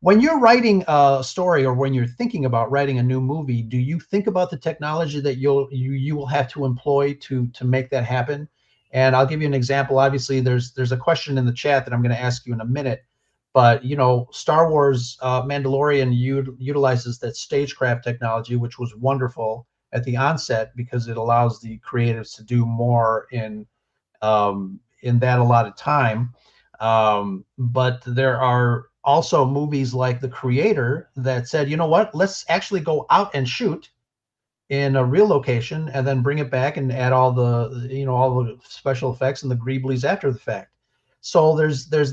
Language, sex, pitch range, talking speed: English, male, 120-140 Hz, 195 wpm